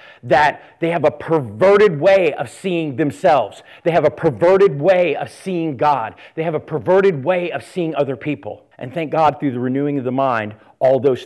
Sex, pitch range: male, 130-175 Hz